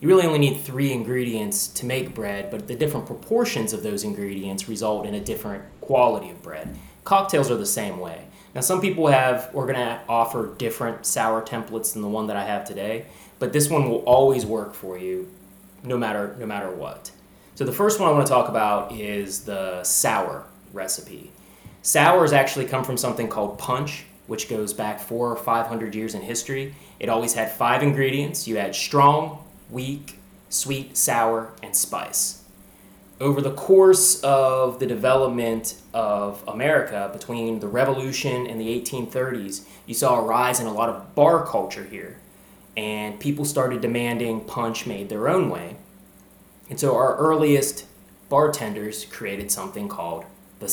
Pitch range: 105-135 Hz